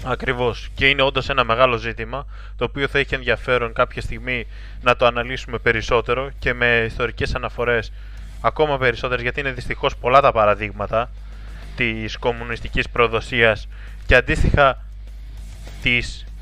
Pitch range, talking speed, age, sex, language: 110-145 Hz, 130 wpm, 20-39, male, Greek